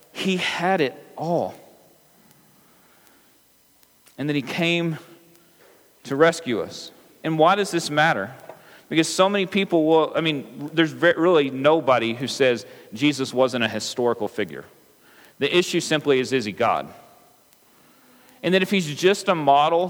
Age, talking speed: 40-59, 140 wpm